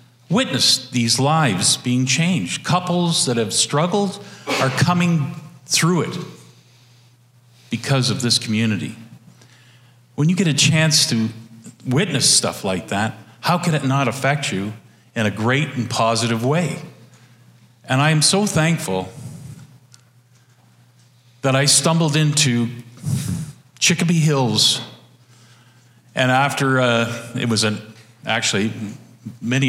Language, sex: English, male